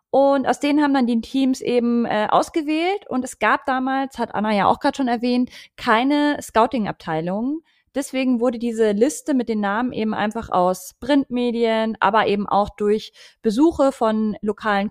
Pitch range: 215-265 Hz